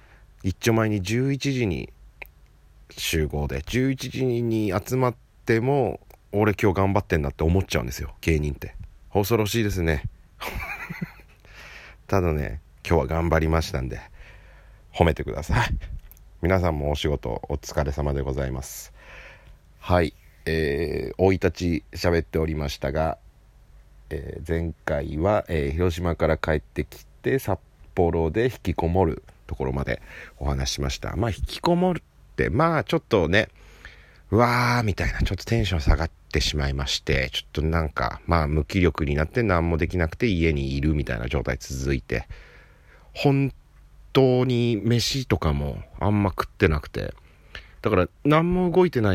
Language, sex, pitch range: Japanese, male, 75-105 Hz